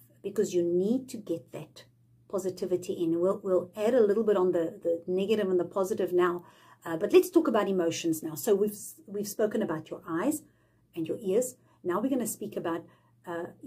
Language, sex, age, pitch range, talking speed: English, female, 50-69, 170-275 Hz, 200 wpm